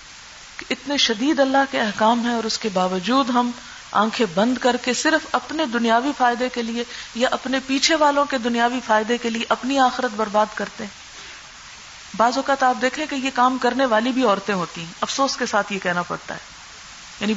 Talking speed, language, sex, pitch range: 190 wpm, Urdu, female, 210-265 Hz